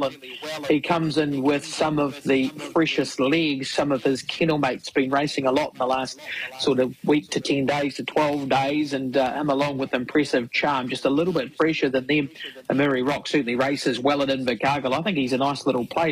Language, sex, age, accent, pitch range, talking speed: English, male, 40-59, Australian, 135-160 Hz, 220 wpm